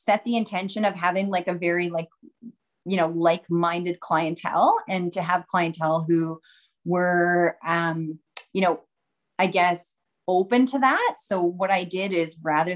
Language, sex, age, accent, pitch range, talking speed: English, female, 30-49, American, 170-195 Hz, 155 wpm